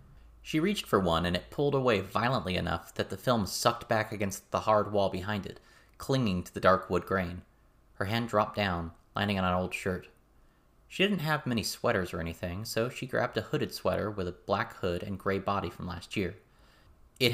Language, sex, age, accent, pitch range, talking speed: English, male, 30-49, American, 90-115 Hz, 210 wpm